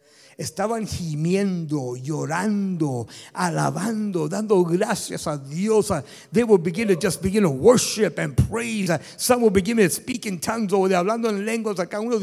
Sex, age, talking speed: male, 60-79, 145 wpm